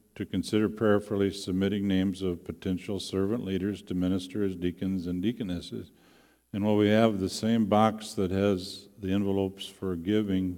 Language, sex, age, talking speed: English, male, 50-69, 155 wpm